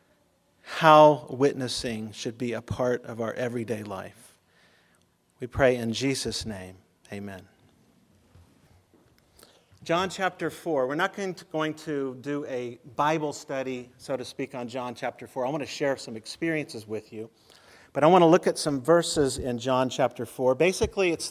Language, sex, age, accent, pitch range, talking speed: English, male, 40-59, American, 120-150 Hz, 165 wpm